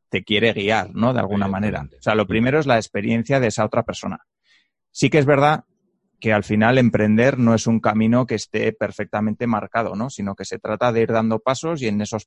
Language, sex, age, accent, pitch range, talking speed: Spanish, male, 30-49, Spanish, 105-125 Hz, 225 wpm